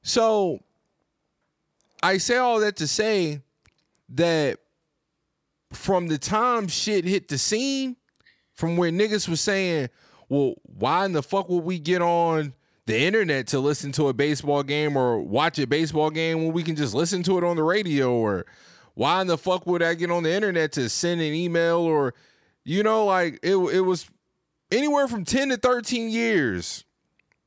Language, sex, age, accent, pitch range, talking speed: English, male, 20-39, American, 150-195 Hz, 175 wpm